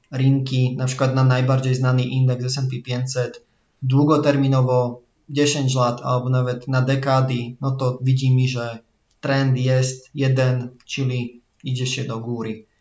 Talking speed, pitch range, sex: 130 wpm, 125-140 Hz, male